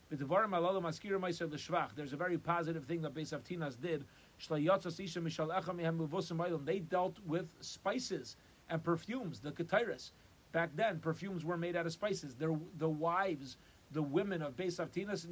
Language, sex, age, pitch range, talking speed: English, male, 40-59, 165-195 Hz, 125 wpm